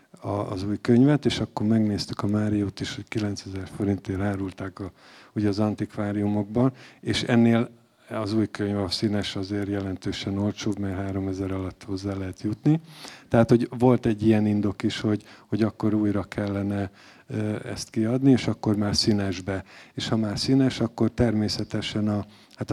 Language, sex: Hungarian, male